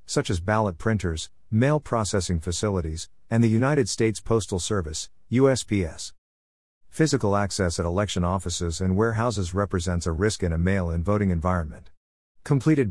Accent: American